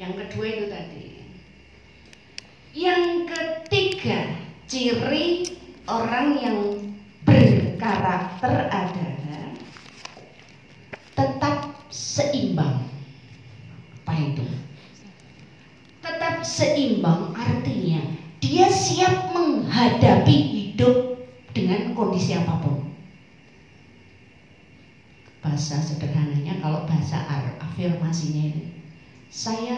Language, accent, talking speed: Indonesian, native, 65 wpm